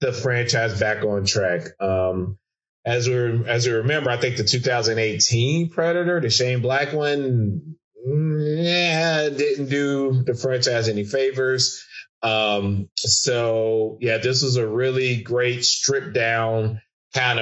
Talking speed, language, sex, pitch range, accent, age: 130 wpm, English, male, 110-145 Hz, American, 20-39